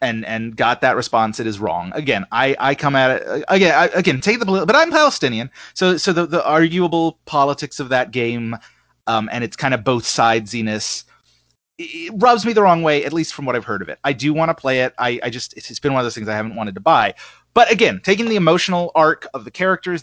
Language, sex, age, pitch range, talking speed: English, male, 30-49, 115-160 Hz, 245 wpm